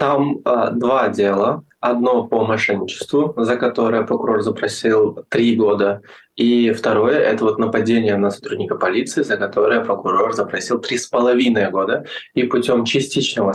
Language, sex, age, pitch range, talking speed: Russian, male, 20-39, 105-125 Hz, 140 wpm